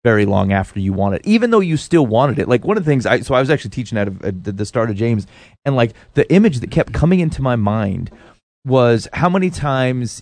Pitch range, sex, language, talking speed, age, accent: 115-165 Hz, male, English, 245 wpm, 30-49, American